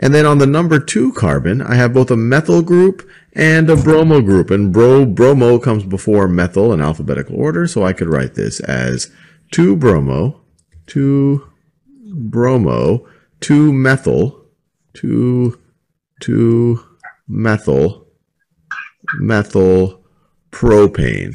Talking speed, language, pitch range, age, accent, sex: 120 wpm, English, 85-135 Hz, 40-59, American, male